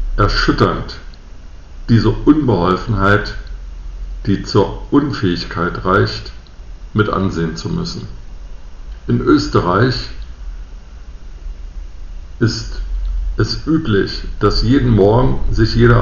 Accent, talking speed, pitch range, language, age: German, 80 wpm, 70-110 Hz, German, 50-69